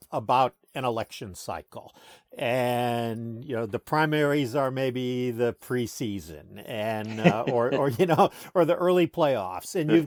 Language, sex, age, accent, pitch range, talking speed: English, male, 50-69, American, 120-160 Hz, 150 wpm